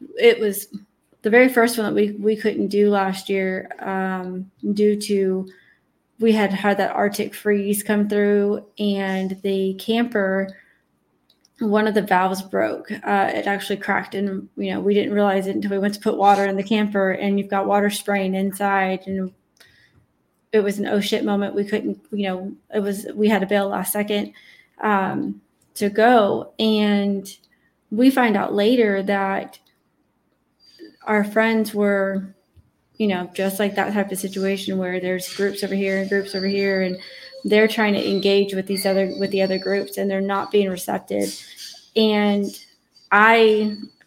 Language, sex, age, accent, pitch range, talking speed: English, female, 20-39, American, 195-215 Hz, 170 wpm